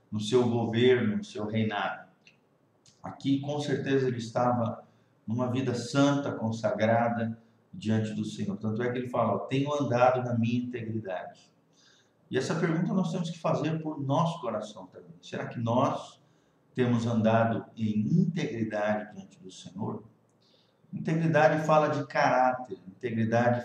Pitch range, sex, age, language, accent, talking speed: 115-150 Hz, male, 50-69, Portuguese, Brazilian, 135 wpm